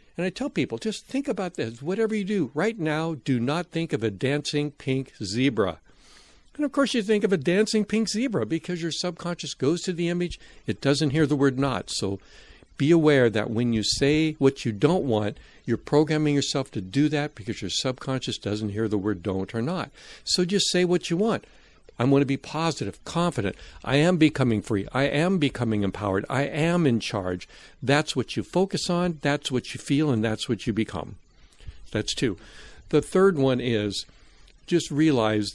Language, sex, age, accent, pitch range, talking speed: English, male, 60-79, American, 115-165 Hz, 195 wpm